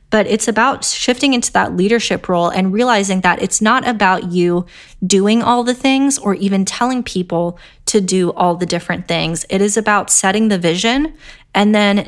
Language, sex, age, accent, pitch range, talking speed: English, female, 20-39, American, 180-215 Hz, 185 wpm